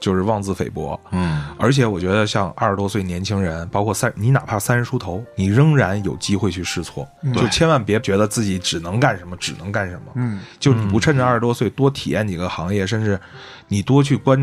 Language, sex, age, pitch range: Chinese, male, 20-39, 95-130 Hz